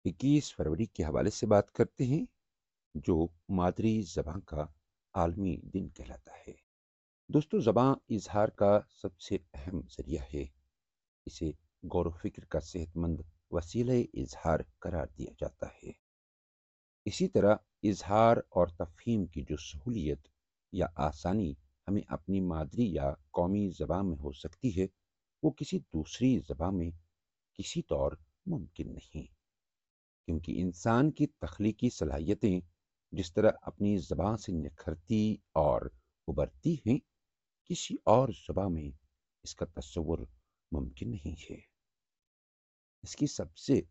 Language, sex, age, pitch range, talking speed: Hindi, male, 60-79, 80-105 Hz, 120 wpm